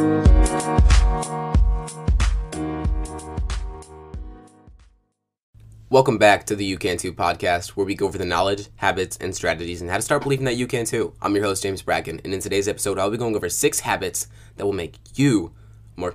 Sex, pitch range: male, 90-110 Hz